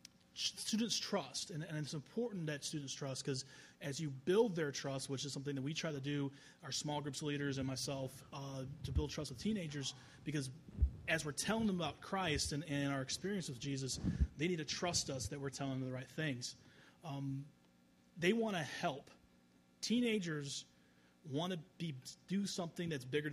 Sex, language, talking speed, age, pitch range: male, English, 185 wpm, 30-49, 130-155 Hz